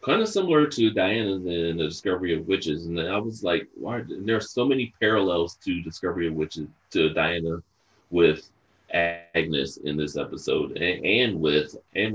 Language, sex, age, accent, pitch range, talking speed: English, male, 30-49, American, 80-100 Hz, 180 wpm